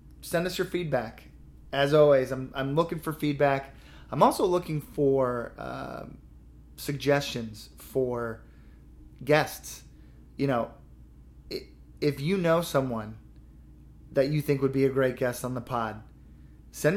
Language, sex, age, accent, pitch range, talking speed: English, male, 30-49, American, 115-140 Hz, 130 wpm